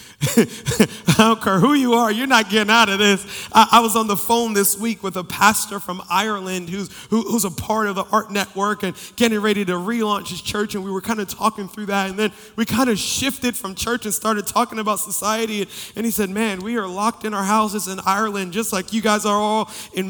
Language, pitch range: English, 205-235 Hz